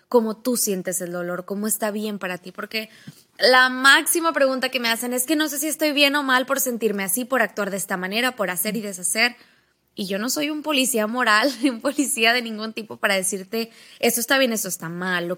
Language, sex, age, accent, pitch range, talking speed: Spanish, female, 20-39, Mexican, 195-250 Hz, 235 wpm